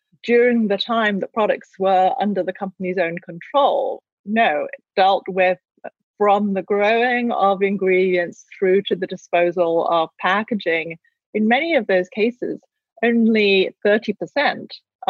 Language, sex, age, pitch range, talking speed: English, female, 30-49, 180-215 Hz, 130 wpm